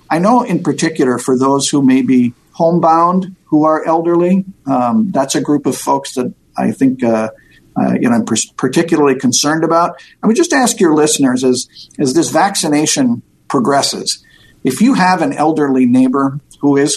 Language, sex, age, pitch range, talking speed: English, male, 50-69, 135-180 Hz, 175 wpm